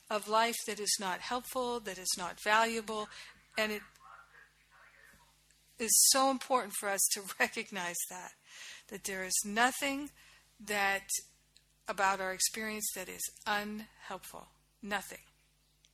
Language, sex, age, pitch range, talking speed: English, female, 50-69, 195-240 Hz, 120 wpm